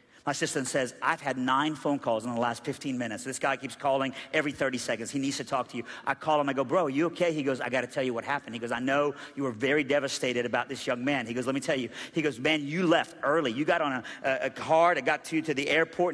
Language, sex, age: English, male, 50-69